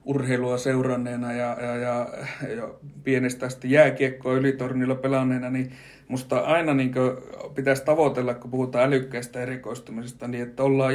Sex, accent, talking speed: male, native, 125 wpm